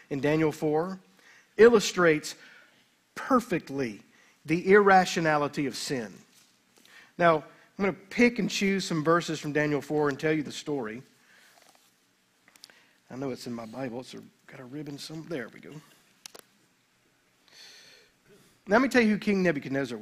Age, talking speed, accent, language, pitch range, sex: 50-69, 145 wpm, American, English, 150-195 Hz, male